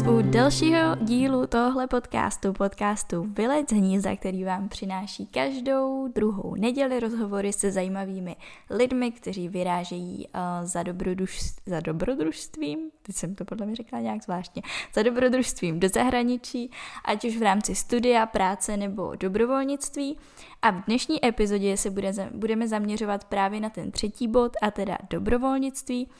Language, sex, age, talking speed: Czech, female, 10-29, 135 wpm